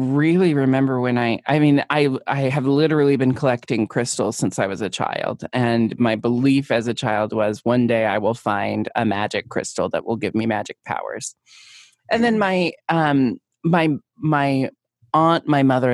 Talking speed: 180 wpm